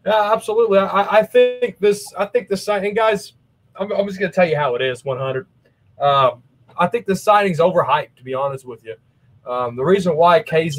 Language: English